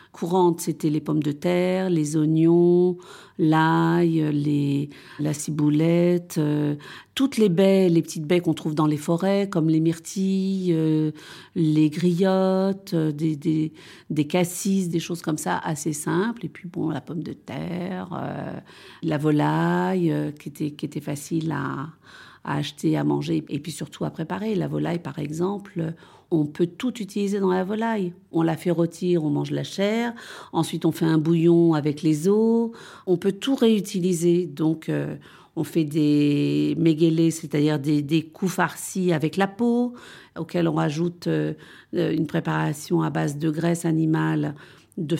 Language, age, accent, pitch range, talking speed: French, 50-69, French, 155-185 Hz, 165 wpm